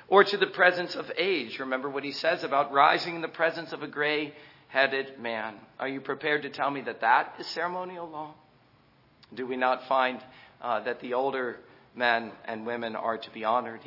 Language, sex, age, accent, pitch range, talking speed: English, male, 50-69, American, 135-180 Hz, 195 wpm